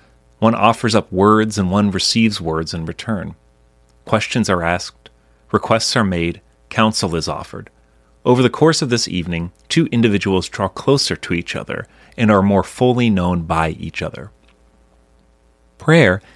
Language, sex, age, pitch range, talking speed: English, male, 30-49, 70-115 Hz, 150 wpm